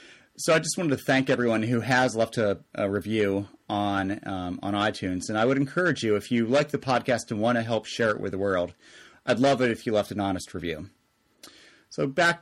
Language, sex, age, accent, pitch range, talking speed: English, male, 30-49, American, 110-145 Hz, 225 wpm